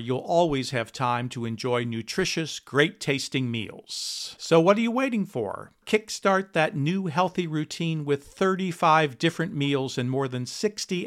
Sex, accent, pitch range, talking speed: male, American, 130-175 Hz, 155 wpm